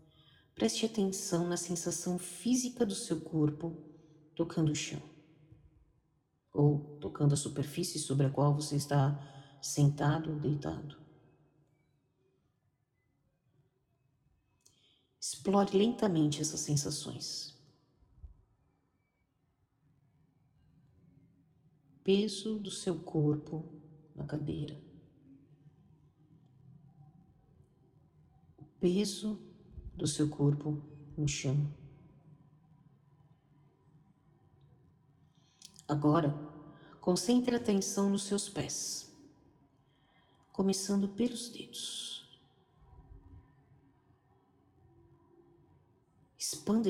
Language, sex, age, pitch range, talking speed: Portuguese, female, 50-69, 140-170 Hz, 65 wpm